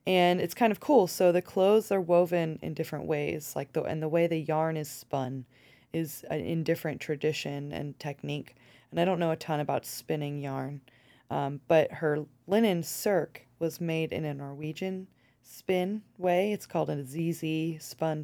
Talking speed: 180 wpm